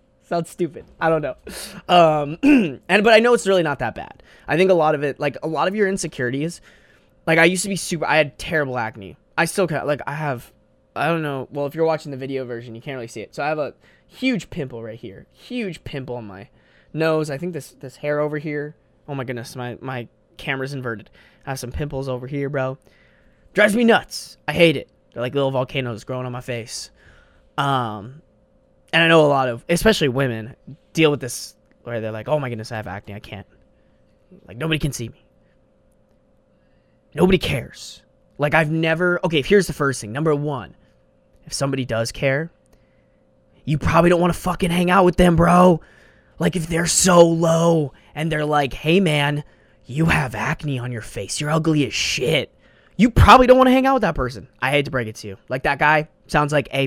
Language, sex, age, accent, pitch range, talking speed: English, male, 20-39, American, 125-165 Hz, 215 wpm